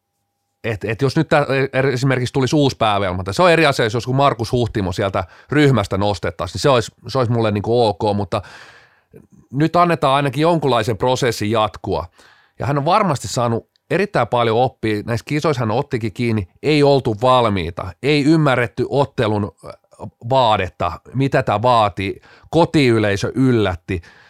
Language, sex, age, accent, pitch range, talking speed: Finnish, male, 30-49, native, 105-140 Hz, 140 wpm